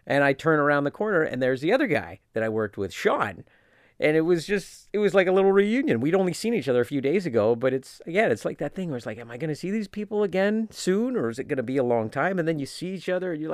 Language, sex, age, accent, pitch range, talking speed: English, male, 40-59, American, 105-160 Hz, 315 wpm